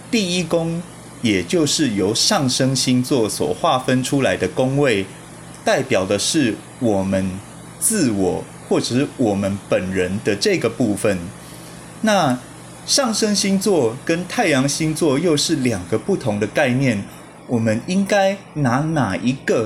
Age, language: 20-39, Chinese